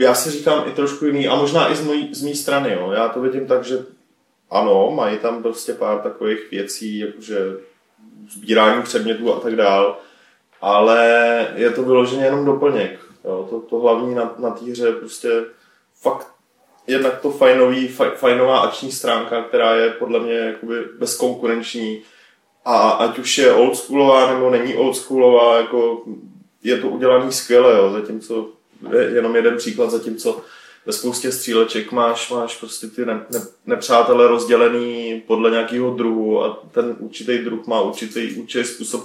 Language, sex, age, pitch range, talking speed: Czech, male, 20-39, 115-130 Hz, 155 wpm